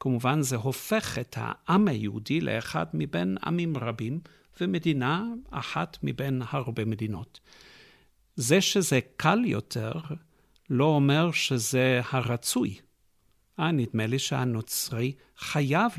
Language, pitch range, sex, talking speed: Hebrew, 120-155 Hz, male, 105 wpm